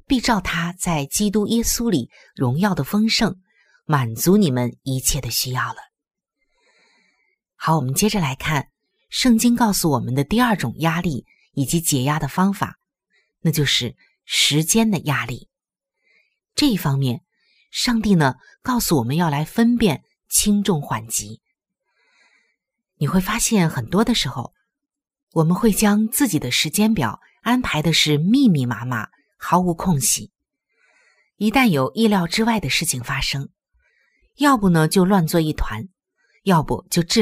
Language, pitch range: Chinese, 140-225 Hz